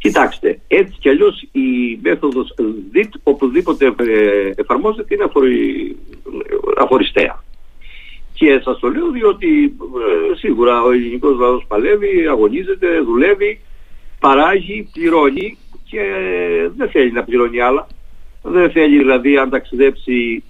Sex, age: male, 50-69